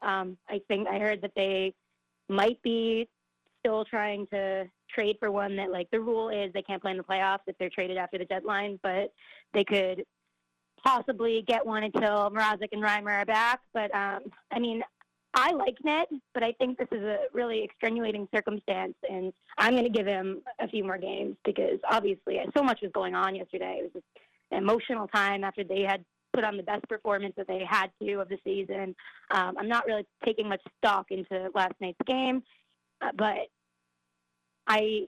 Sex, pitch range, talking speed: female, 190-225 Hz, 190 wpm